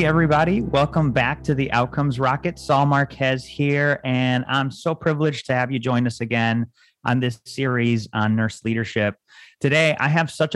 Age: 30-49